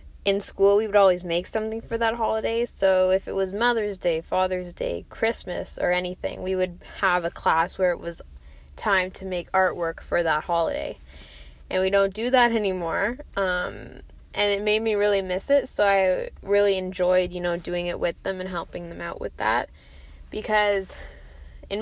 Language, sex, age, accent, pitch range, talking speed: English, female, 10-29, American, 165-200 Hz, 185 wpm